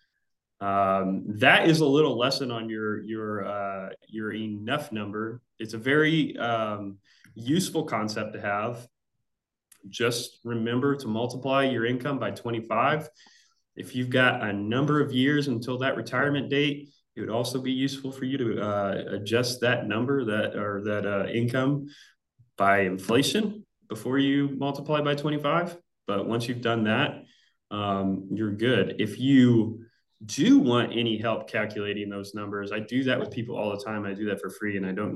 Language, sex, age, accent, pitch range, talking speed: English, male, 20-39, American, 100-125 Hz, 165 wpm